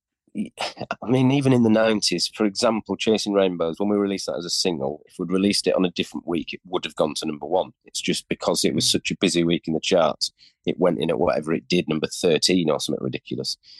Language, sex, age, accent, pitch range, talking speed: English, male, 30-49, British, 90-105 Hz, 245 wpm